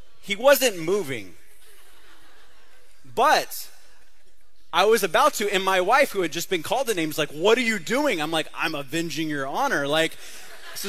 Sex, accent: male, American